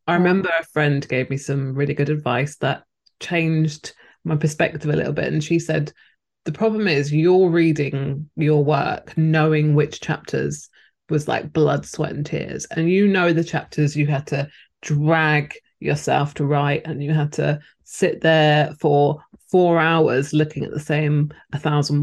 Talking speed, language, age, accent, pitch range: 170 wpm, English, 20-39, British, 150-175 Hz